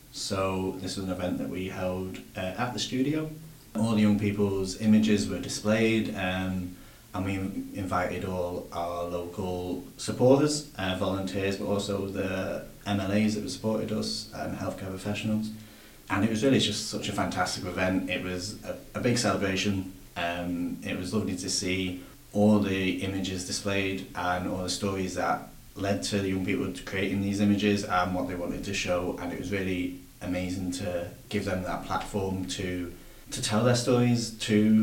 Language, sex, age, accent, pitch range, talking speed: English, male, 30-49, British, 90-105 Hz, 170 wpm